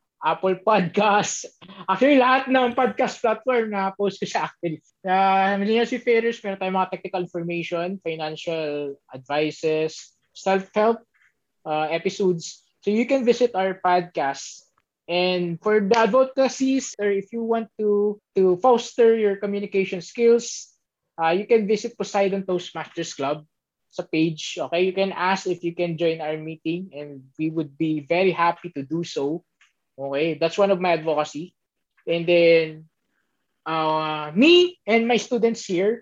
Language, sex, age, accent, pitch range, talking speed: Filipino, male, 20-39, native, 160-205 Hz, 145 wpm